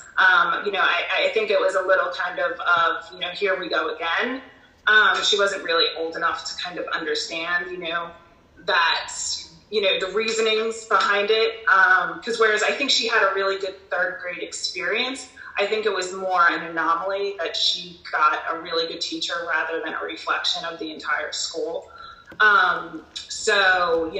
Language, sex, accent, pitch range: English, female, American, 175-270 Hz